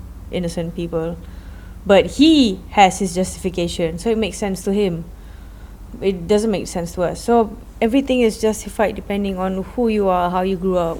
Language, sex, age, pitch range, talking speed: English, female, 20-39, 160-195 Hz, 175 wpm